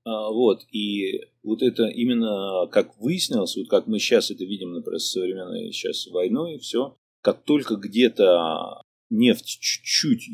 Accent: native